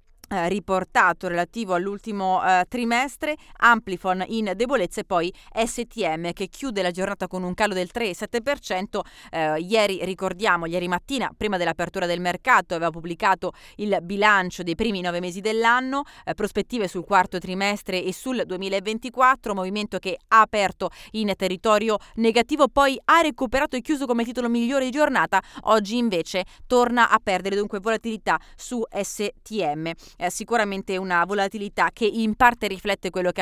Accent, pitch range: native, 180-230 Hz